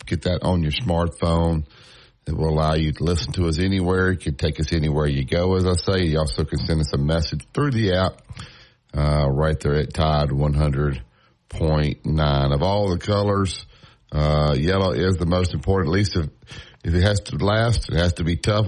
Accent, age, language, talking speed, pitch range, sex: American, 60-79, English, 210 wpm, 80-100 Hz, male